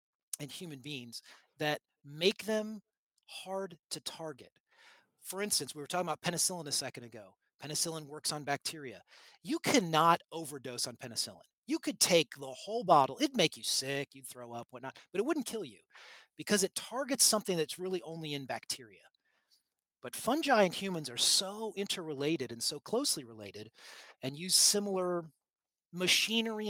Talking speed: 160 wpm